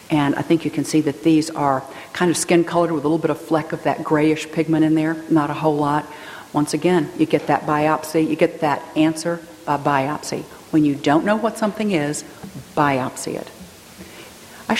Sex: female